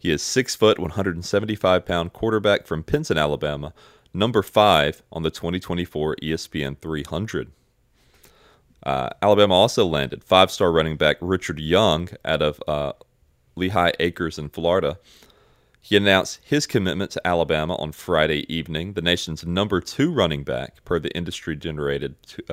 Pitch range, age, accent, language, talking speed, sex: 75-95 Hz, 30-49, American, English, 145 wpm, male